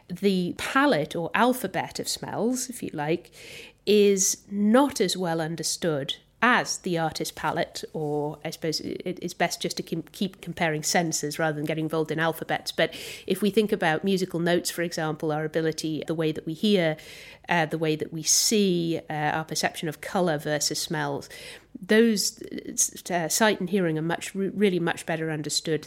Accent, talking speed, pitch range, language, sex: British, 170 wpm, 155-200 Hz, English, female